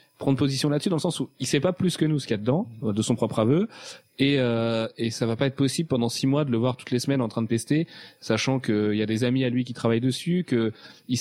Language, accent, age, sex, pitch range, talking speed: French, French, 30-49, male, 110-135 Hz, 300 wpm